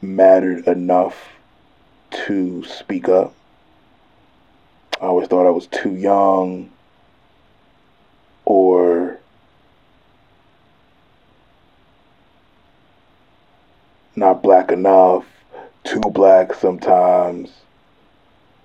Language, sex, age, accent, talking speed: English, male, 20-39, American, 60 wpm